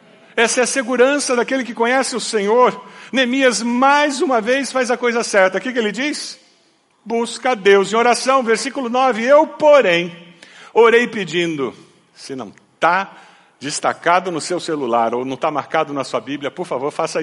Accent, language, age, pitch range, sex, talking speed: Brazilian, Portuguese, 50-69, 210-270 Hz, male, 170 wpm